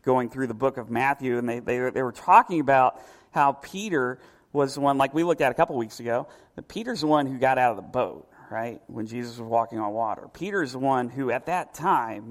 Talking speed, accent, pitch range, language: 245 wpm, American, 115-150 Hz, English